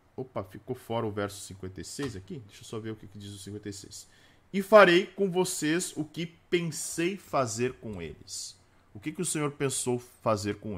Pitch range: 100-145 Hz